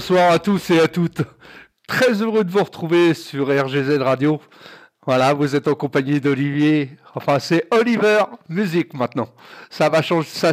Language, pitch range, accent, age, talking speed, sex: French, 145-195 Hz, French, 50-69, 155 wpm, male